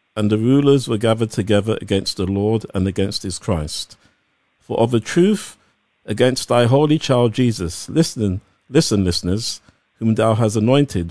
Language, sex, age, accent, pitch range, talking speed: English, male, 50-69, British, 95-120 Hz, 155 wpm